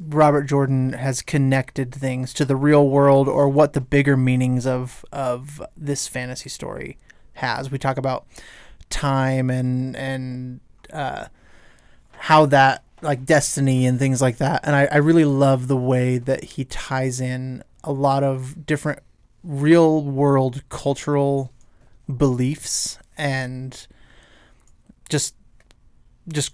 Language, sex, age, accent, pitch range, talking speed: English, male, 20-39, American, 130-145 Hz, 130 wpm